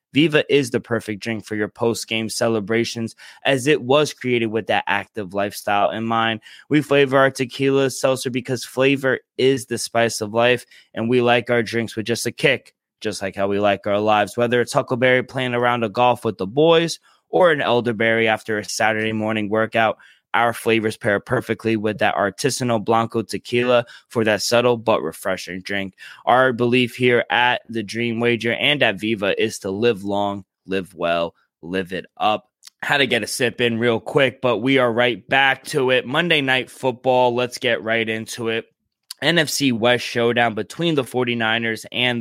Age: 20-39